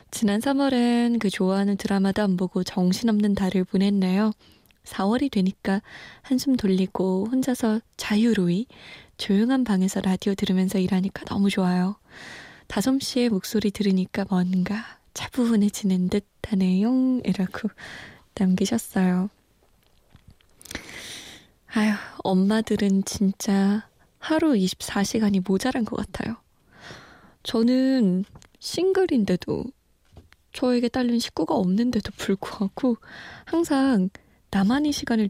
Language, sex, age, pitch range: Korean, female, 20-39, 195-235 Hz